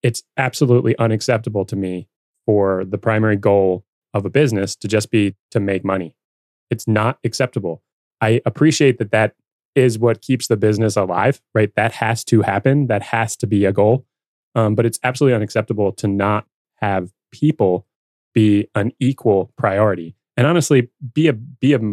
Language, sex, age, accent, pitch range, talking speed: English, male, 20-39, American, 100-125 Hz, 165 wpm